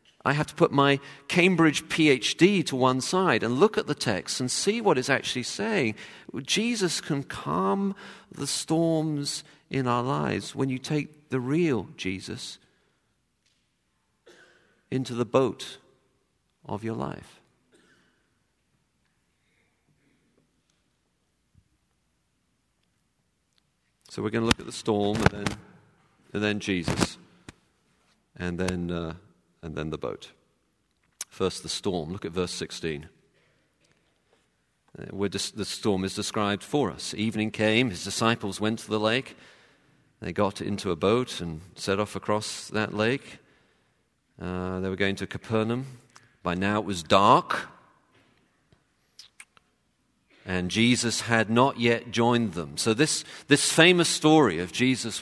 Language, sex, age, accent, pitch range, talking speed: English, male, 50-69, British, 100-140 Hz, 130 wpm